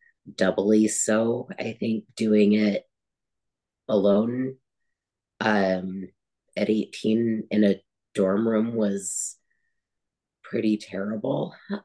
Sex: female